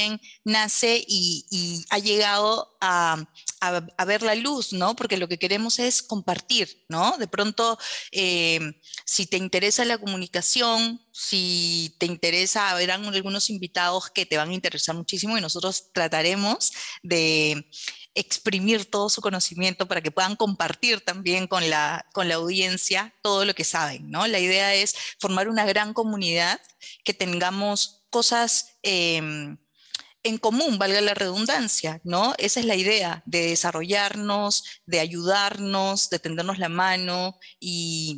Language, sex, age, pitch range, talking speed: Spanish, female, 30-49, 175-210 Hz, 145 wpm